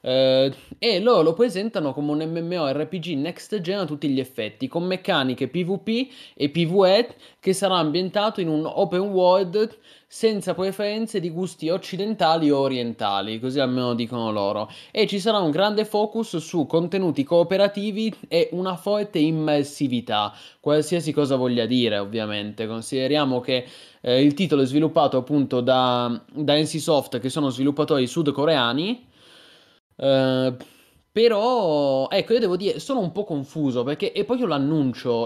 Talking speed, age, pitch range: 145 wpm, 20-39, 130-185 Hz